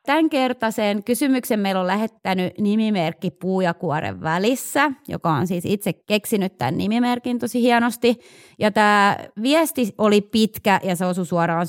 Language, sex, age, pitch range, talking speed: Finnish, female, 30-49, 175-220 Hz, 145 wpm